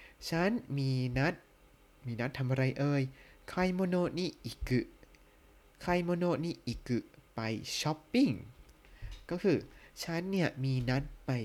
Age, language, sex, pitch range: 20-39, Thai, male, 120-150 Hz